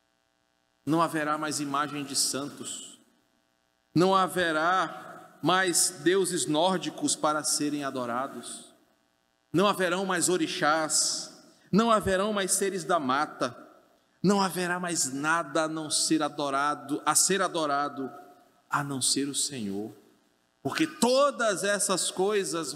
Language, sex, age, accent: Portuguese, male, 40-59, Brazilian